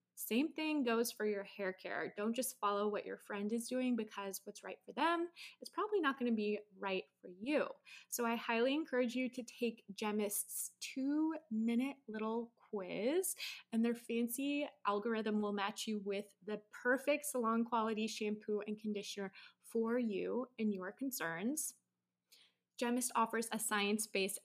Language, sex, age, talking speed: English, female, 20-39, 155 wpm